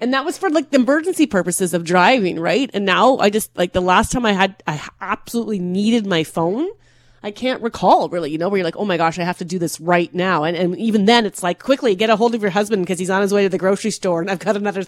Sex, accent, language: female, American, English